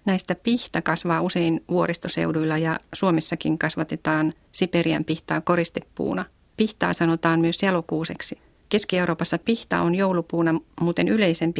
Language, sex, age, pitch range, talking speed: Finnish, female, 40-59, 160-185 Hz, 110 wpm